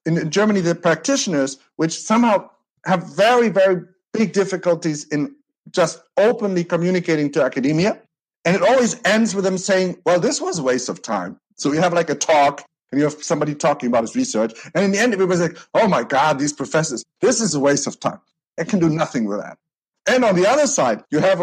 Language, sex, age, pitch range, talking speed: English, male, 50-69, 155-195 Hz, 215 wpm